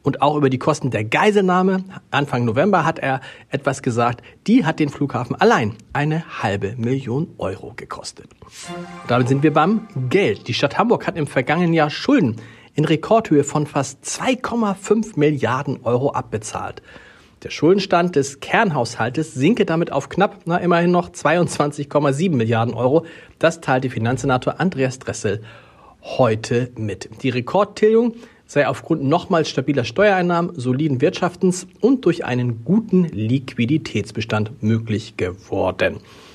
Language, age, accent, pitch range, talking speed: German, 40-59, German, 125-175 Hz, 135 wpm